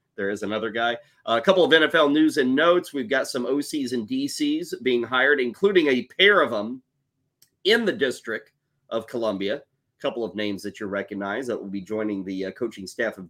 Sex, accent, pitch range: male, American, 110-155 Hz